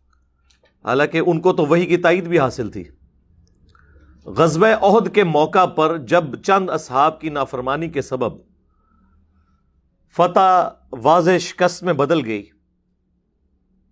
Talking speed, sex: 120 wpm, male